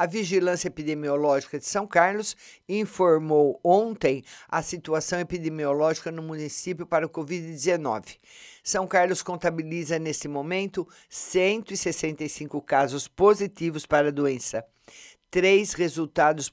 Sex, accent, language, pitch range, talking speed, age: male, Brazilian, Portuguese, 150-185 Hz, 105 wpm, 50-69